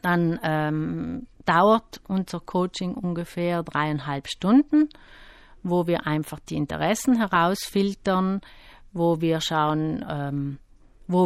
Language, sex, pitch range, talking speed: German, female, 150-185 Hz, 100 wpm